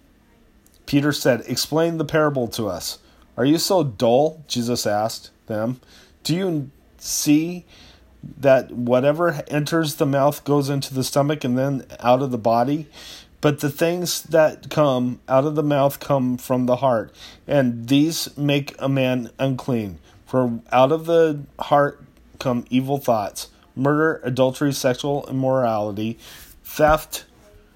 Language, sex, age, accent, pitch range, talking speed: English, male, 30-49, American, 120-150 Hz, 140 wpm